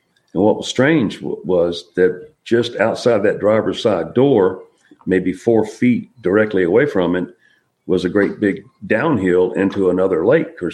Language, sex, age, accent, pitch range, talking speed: English, male, 50-69, American, 90-120 Hz, 160 wpm